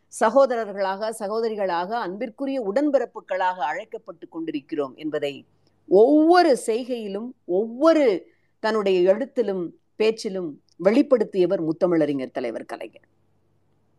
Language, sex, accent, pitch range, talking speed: Tamil, female, native, 190-280 Hz, 75 wpm